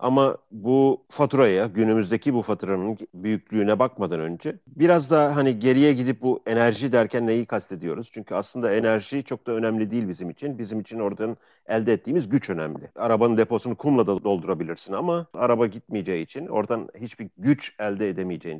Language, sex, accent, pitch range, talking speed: Turkish, male, native, 95-120 Hz, 160 wpm